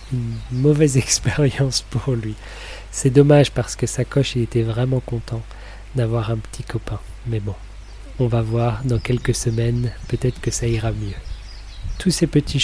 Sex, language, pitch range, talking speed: male, French, 110-135 Hz, 155 wpm